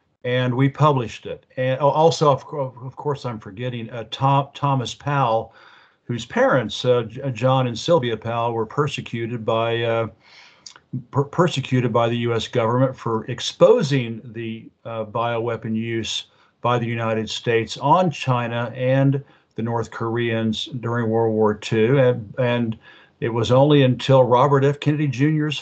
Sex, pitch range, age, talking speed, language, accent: male, 115-140 Hz, 50-69, 140 wpm, English, American